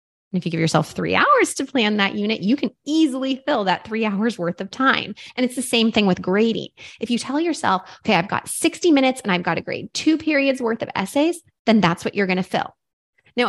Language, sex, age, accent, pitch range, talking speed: English, female, 20-39, American, 205-275 Hz, 245 wpm